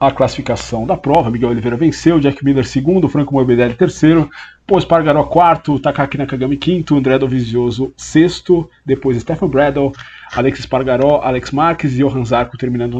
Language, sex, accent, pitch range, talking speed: Portuguese, male, Brazilian, 130-155 Hz, 150 wpm